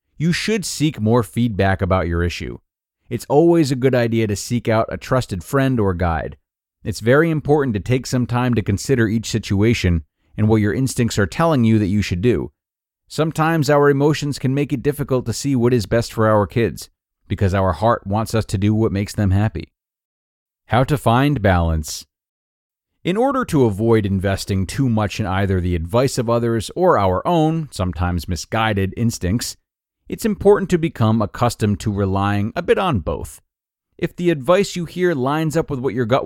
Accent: American